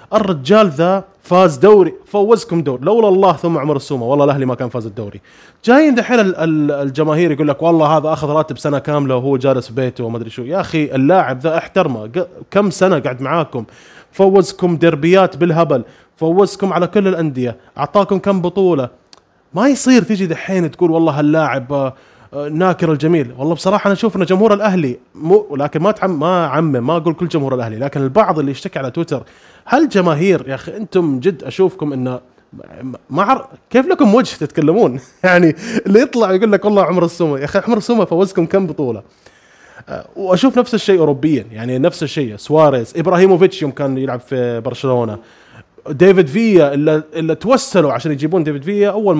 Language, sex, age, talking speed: Arabic, male, 20-39, 170 wpm